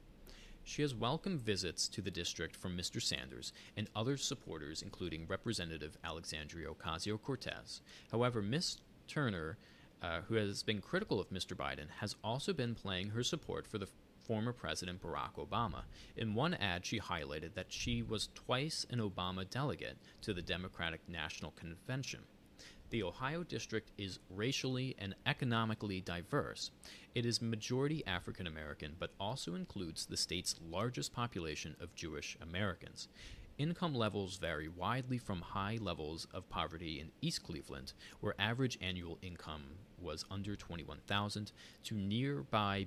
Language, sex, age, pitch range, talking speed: English, male, 30-49, 85-115 Hz, 140 wpm